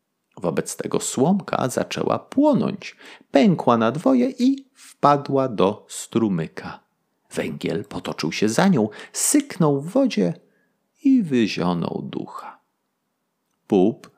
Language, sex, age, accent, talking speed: Polish, male, 40-59, native, 100 wpm